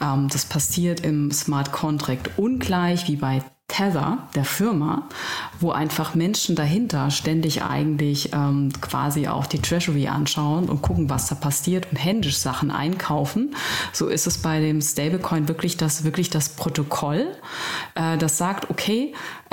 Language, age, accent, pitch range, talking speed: German, 30-49, German, 145-180 Hz, 140 wpm